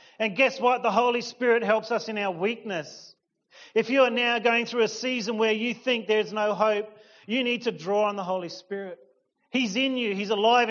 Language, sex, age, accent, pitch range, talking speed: English, male, 40-59, Australian, 200-240 Hz, 215 wpm